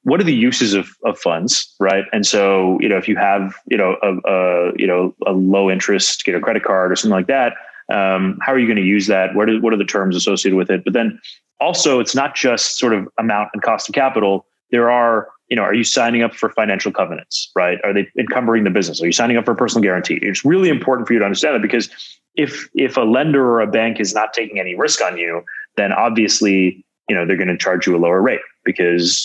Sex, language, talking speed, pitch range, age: male, English, 250 wpm, 90-120 Hz, 30-49